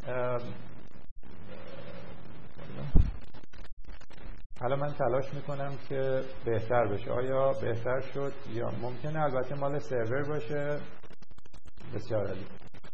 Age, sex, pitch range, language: 50-69, male, 115-145 Hz, English